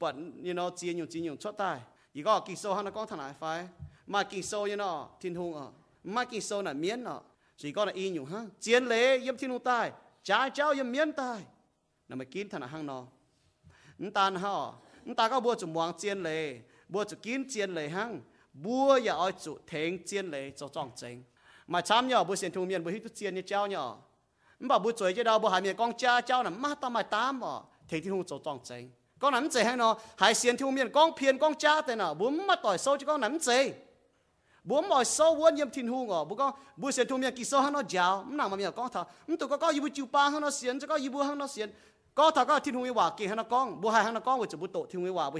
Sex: male